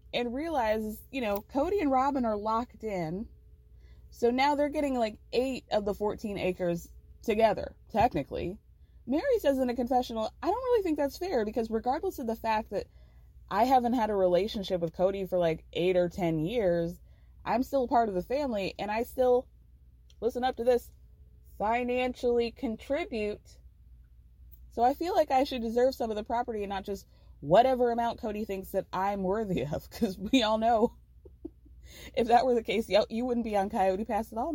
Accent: American